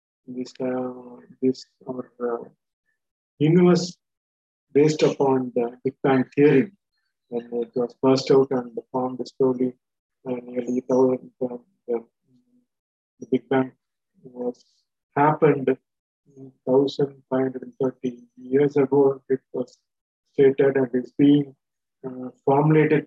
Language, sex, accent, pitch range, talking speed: Tamil, male, native, 125-145 Hz, 110 wpm